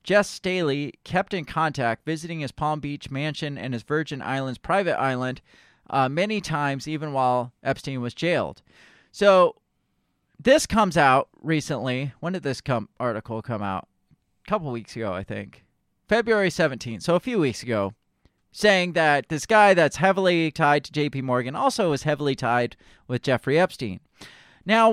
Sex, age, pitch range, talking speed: male, 30-49, 130-175 Hz, 160 wpm